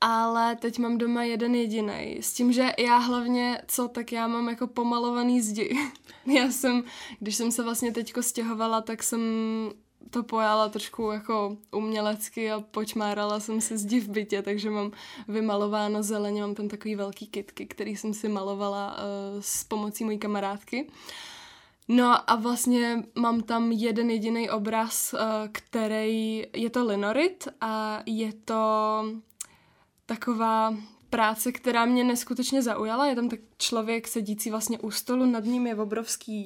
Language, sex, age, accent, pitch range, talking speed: Czech, female, 10-29, native, 215-240 Hz, 150 wpm